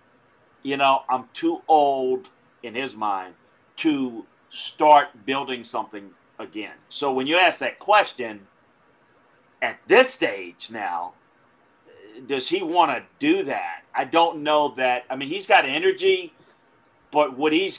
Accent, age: American, 40-59